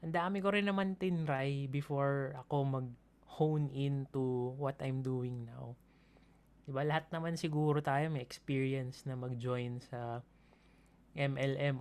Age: 20-39